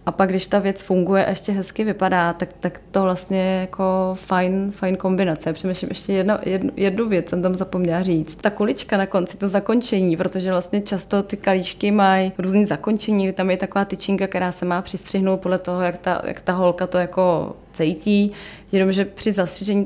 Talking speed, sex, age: 195 wpm, female, 20-39